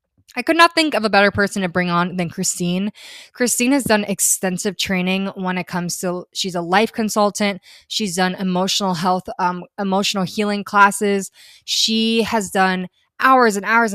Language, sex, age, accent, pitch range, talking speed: English, female, 20-39, American, 185-225 Hz, 170 wpm